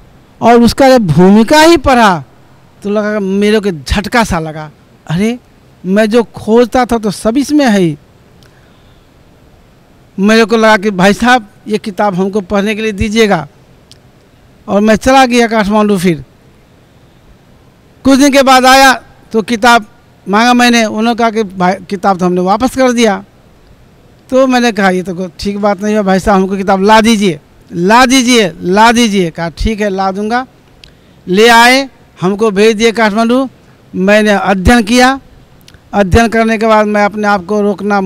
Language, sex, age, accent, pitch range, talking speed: Hindi, male, 60-79, native, 195-230 Hz, 160 wpm